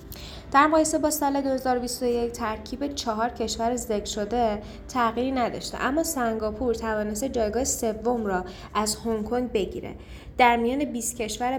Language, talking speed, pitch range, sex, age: Persian, 130 wpm, 210-245 Hz, female, 10-29